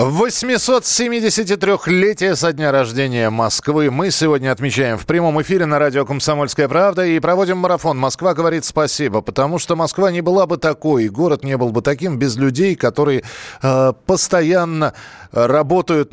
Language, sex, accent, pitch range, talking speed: Russian, male, native, 130-175 Hz, 145 wpm